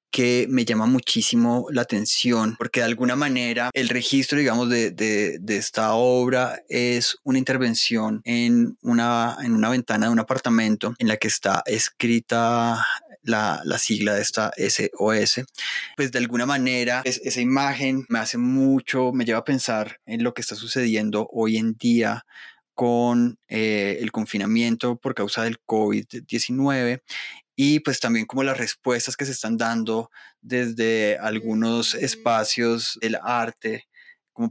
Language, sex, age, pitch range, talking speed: Spanish, male, 20-39, 110-125 Hz, 150 wpm